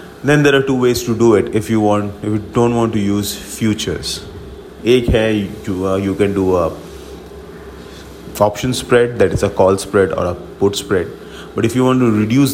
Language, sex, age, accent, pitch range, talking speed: English, male, 30-49, Indian, 95-115 Hz, 200 wpm